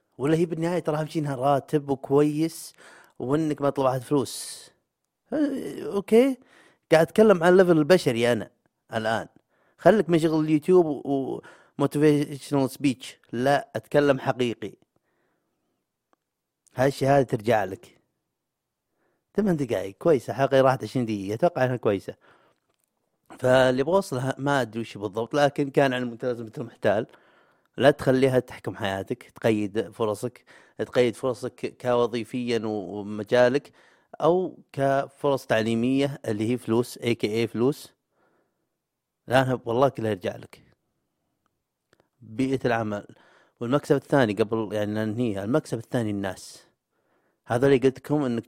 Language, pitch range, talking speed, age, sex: Arabic, 115-145 Hz, 115 wpm, 30-49, male